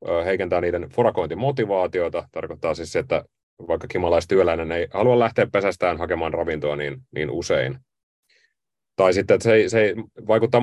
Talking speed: 150 wpm